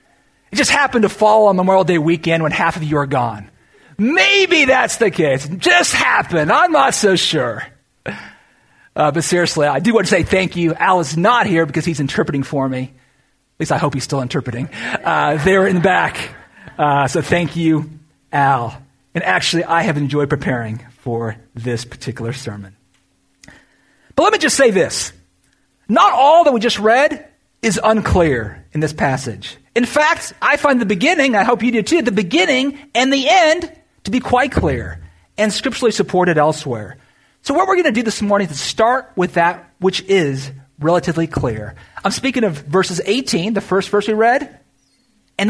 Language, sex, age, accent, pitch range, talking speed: English, male, 40-59, American, 140-230 Hz, 185 wpm